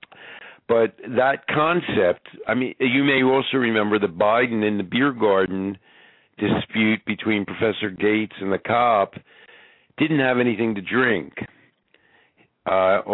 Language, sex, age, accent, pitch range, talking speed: English, male, 50-69, American, 105-125 Hz, 130 wpm